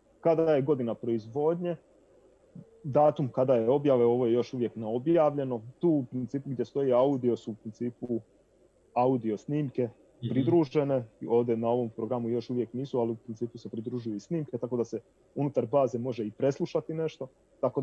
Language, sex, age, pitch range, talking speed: Croatian, male, 30-49, 115-140 Hz, 170 wpm